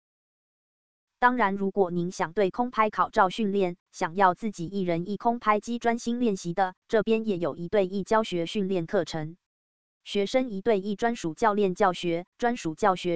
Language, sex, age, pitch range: Chinese, female, 20-39, 175-215 Hz